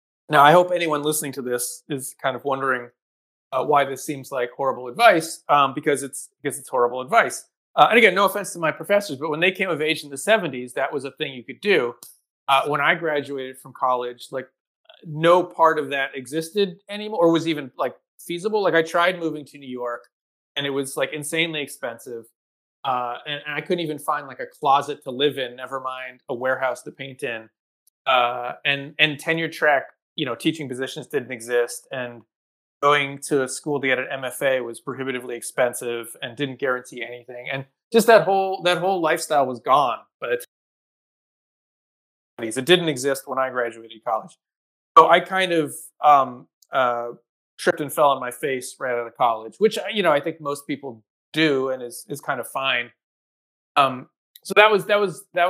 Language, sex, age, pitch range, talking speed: English, male, 30-49, 130-160 Hz, 195 wpm